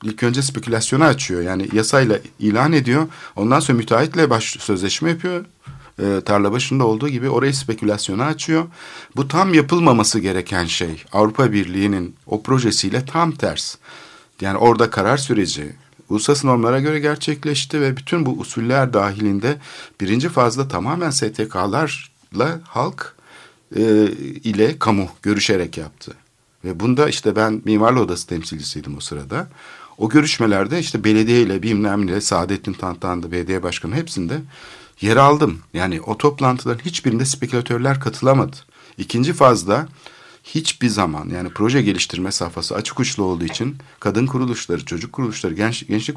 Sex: male